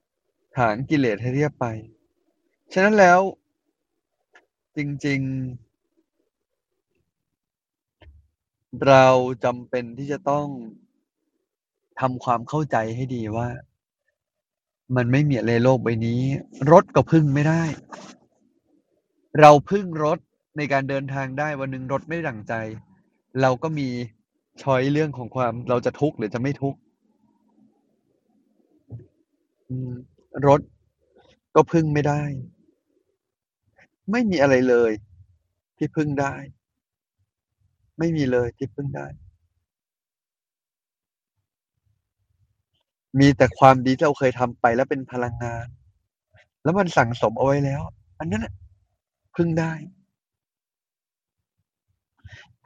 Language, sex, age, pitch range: Thai, male, 20-39, 115-160 Hz